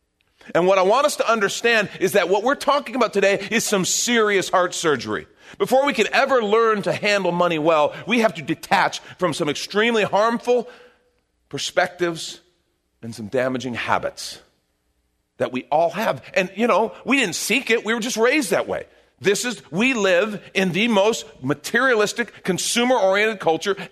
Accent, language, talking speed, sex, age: American, English, 175 wpm, male, 40-59